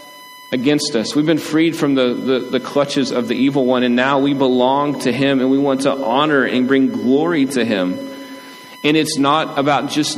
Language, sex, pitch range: English, male, 130-160 Hz